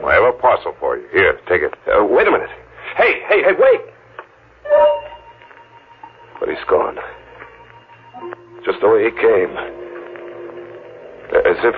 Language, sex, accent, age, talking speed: English, male, American, 60-79, 140 wpm